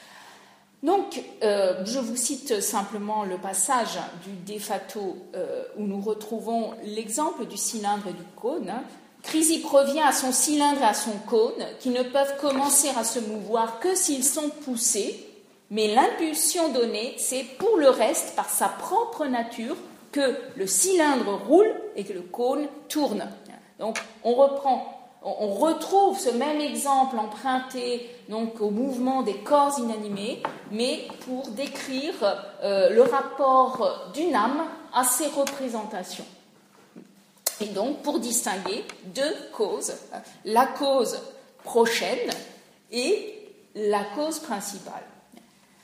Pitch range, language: 220-300 Hz, French